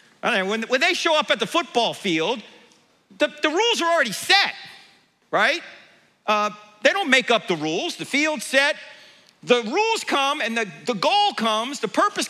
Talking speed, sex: 175 wpm, male